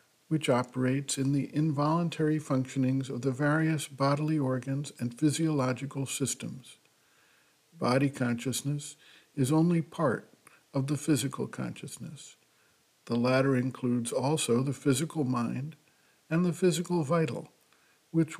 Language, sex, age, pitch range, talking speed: English, male, 60-79, 130-155 Hz, 115 wpm